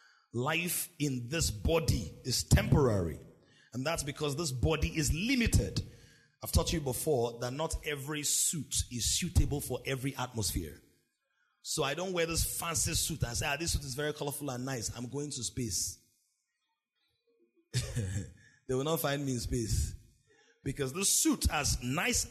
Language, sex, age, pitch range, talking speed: English, male, 30-49, 115-160 Hz, 160 wpm